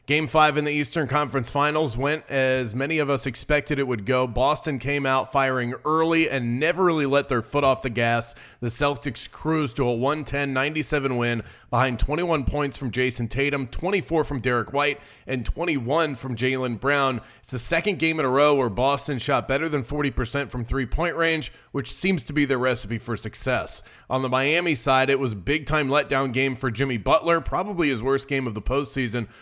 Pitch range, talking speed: 130-150 Hz, 200 wpm